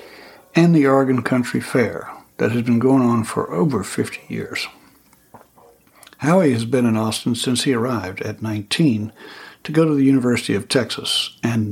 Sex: male